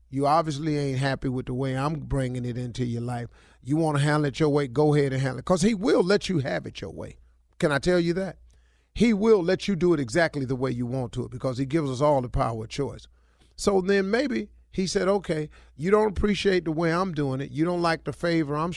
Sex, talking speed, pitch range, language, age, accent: male, 260 wpm, 110-155 Hz, English, 40-59, American